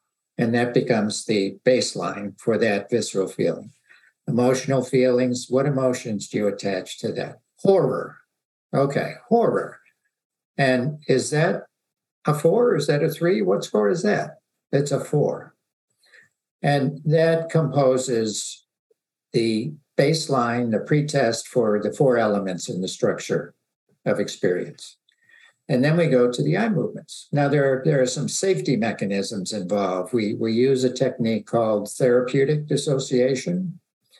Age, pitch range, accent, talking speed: 60-79, 115-145 Hz, American, 140 wpm